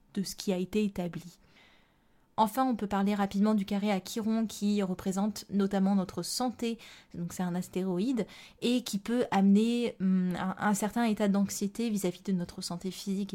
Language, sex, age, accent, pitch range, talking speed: French, female, 20-39, French, 190-230 Hz, 175 wpm